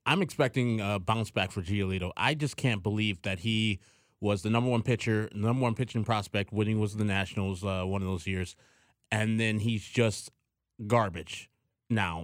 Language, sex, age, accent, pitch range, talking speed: English, male, 20-39, American, 100-130 Hz, 180 wpm